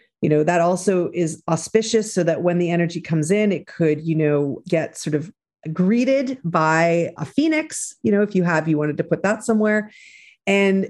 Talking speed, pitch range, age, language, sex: 200 wpm, 155-205 Hz, 40-59, English, female